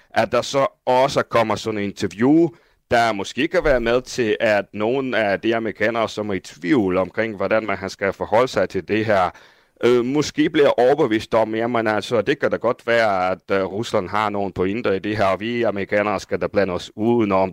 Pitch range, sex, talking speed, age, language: 95-115 Hz, male, 210 wpm, 30-49, Danish